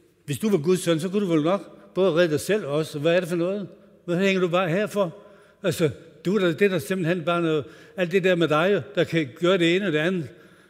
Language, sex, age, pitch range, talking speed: Danish, male, 60-79, 140-190 Hz, 265 wpm